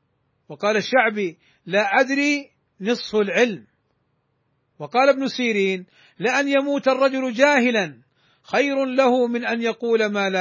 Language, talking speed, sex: Arabic, 115 wpm, male